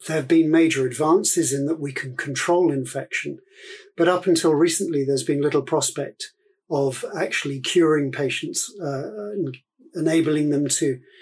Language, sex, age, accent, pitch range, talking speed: English, male, 50-69, British, 140-180 Hz, 145 wpm